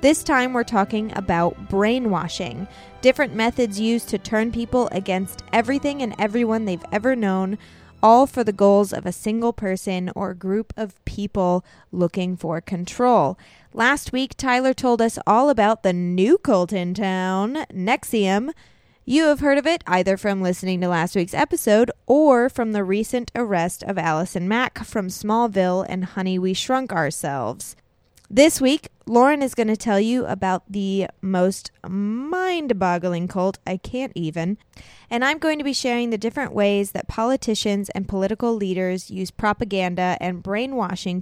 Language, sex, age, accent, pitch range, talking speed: English, female, 20-39, American, 185-245 Hz, 155 wpm